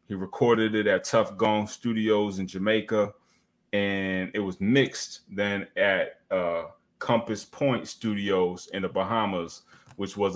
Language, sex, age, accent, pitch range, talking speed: English, male, 20-39, American, 90-105 Hz, 140 wpm